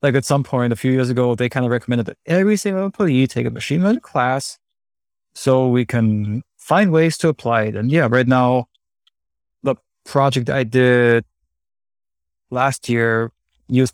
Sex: male